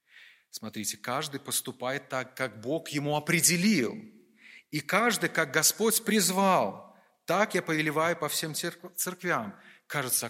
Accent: native